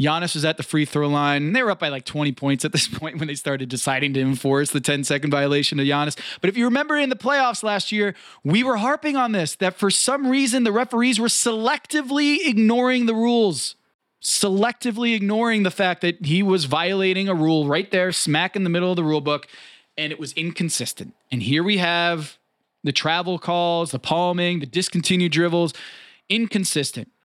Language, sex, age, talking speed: English, male, 20-39, 200 wpm